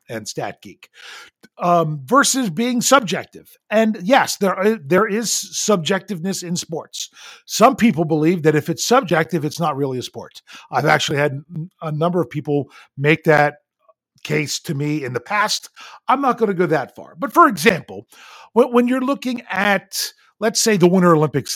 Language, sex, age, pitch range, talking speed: English, male, 50-69, 150-210 Hz, 175 wpm